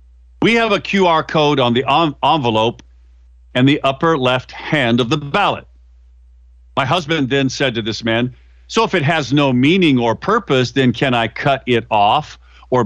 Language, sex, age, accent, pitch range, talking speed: English, male, 50-69, American, 85-140 Hz, 175 wpm